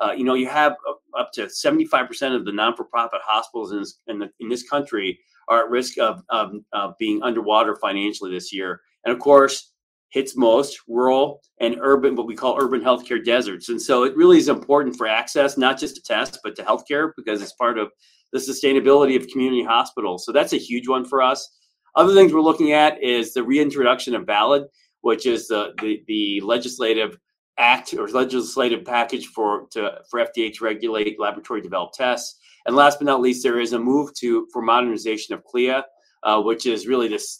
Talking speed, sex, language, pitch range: 195 wpm, male, English, 120-155 Hz